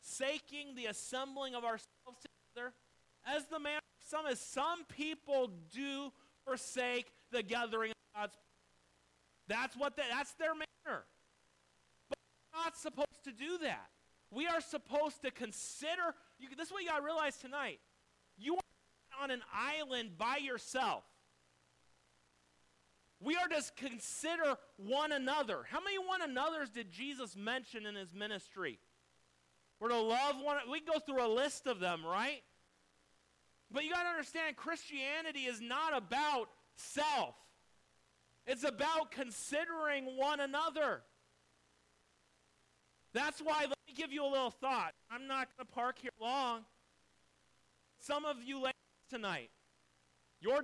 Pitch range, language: 185-295 Hz, English